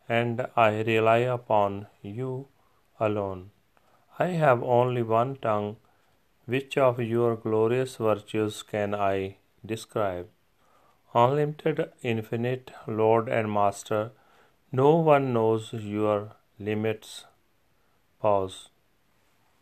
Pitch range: 105-125 Hz